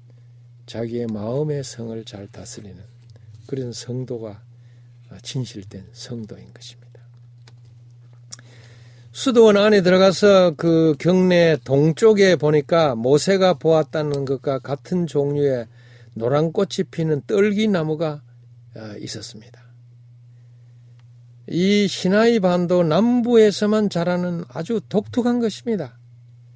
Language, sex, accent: Korean, male, native